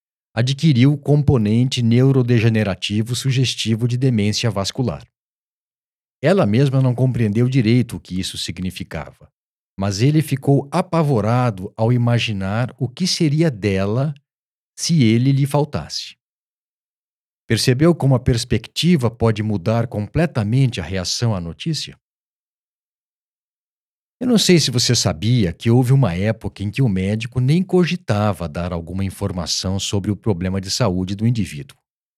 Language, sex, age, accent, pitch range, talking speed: Portuguese, male, 50-69, Brazilian, 100-135 Hz, 125 wpm